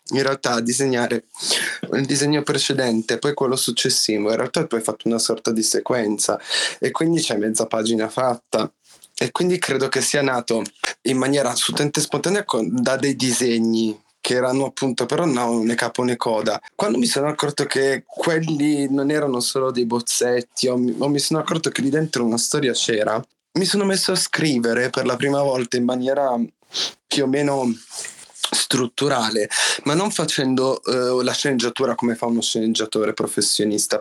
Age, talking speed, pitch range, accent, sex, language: 20-39, 165 wpm, 115-145 Hz, native, male, Italian